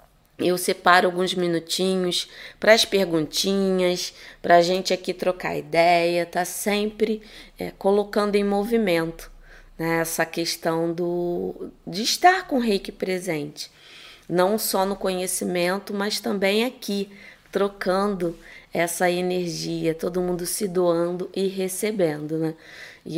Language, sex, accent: Portuguese, female, Brazilian